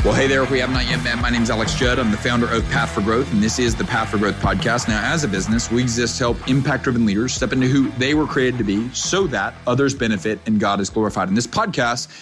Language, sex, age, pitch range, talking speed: English, male, 40-59, 110-135 Hz, 280 wpm